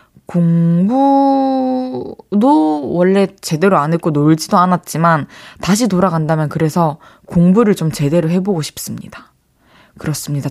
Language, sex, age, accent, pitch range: Korean, female, 20-39, native, 160-205 Hz